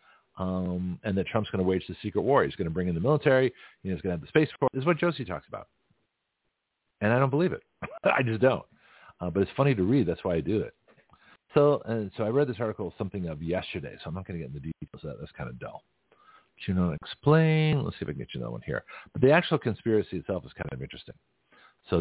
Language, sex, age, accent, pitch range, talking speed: English, male, 50-69, American, 90-120 Hz, 270 wpm